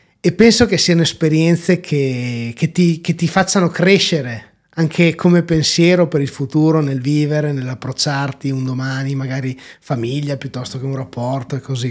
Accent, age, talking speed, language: native, 30-49, 150 wpm, Italian